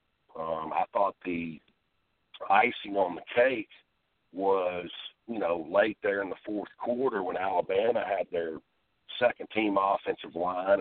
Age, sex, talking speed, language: 50-69, male, 140 wpm, English